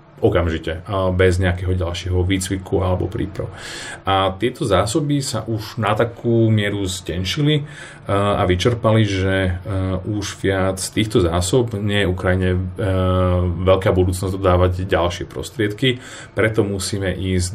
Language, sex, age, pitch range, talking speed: Slovak, male, 30-49, 90-110 Hz, 115 wpm